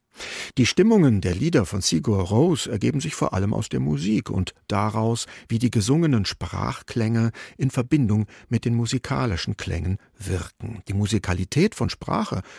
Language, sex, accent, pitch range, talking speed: German, male, German, 100-130 Hz, 150 wpm